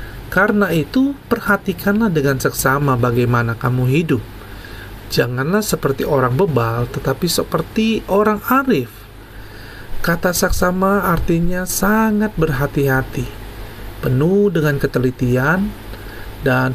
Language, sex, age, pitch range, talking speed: Indonesian, male, 40-59, 120-165 Hz, 90 wpm